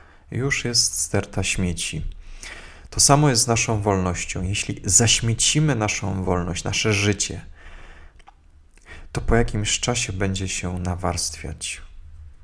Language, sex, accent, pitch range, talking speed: Polish, male, native, 80-110 Hz, 110 wpm